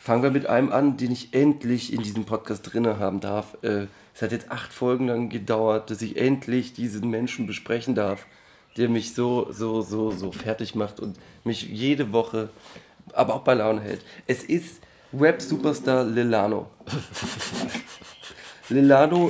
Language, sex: German, male